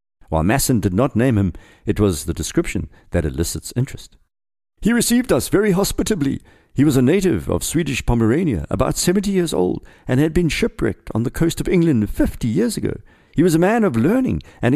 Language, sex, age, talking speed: English, male, 50-69, 195 wpm